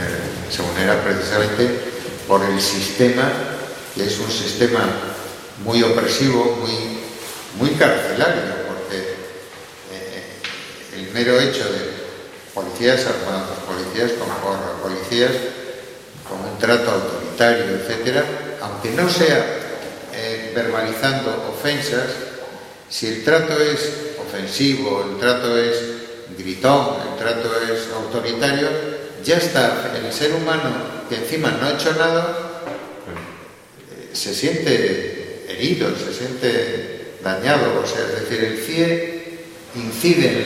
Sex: male